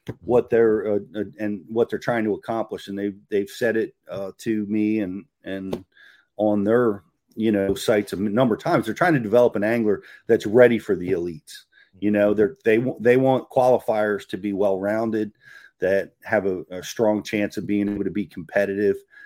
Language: English